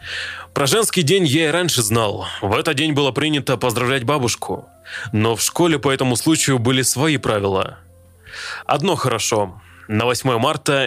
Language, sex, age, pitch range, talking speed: Russian, male, 20-39, 115-145 Hz, 155 wpm